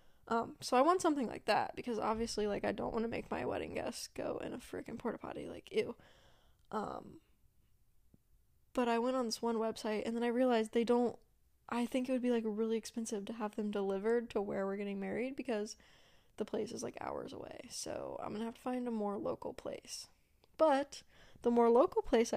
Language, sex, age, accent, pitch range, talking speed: English, female, 10-29, American, 220-265 Hz, 210 wpm